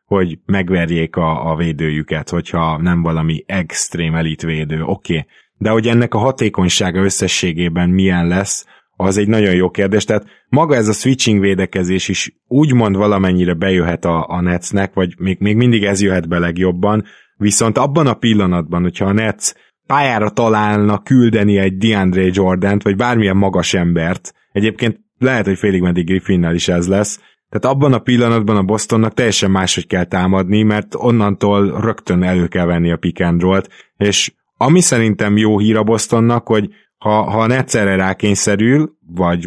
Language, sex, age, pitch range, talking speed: Hungarian, male, 20-39, 90-110 Hz, 160 wpm